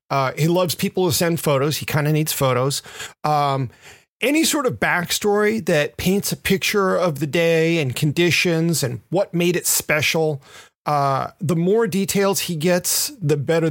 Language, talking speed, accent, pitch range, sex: English, 170 wpm, American, 145-180 Hz, male